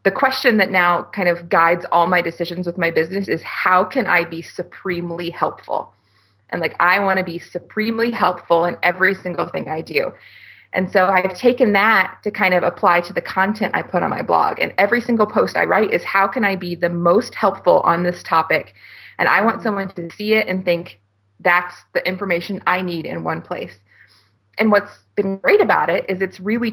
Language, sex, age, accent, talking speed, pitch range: English, female, 20-39, American, 210 wpm, 175-215 Hz